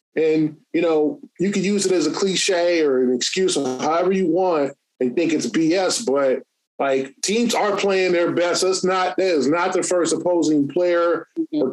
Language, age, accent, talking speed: English, 20-39, American, 200 wpm